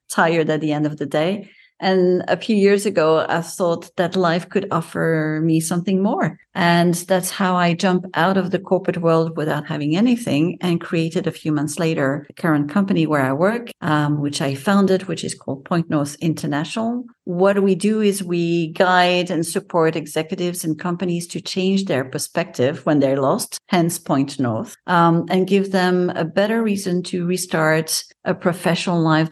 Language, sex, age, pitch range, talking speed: English, female, 50-69, 155-190 Hz, 180 wpm